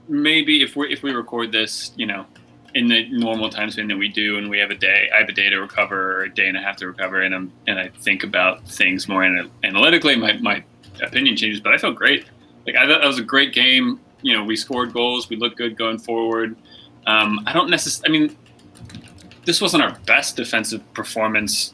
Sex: male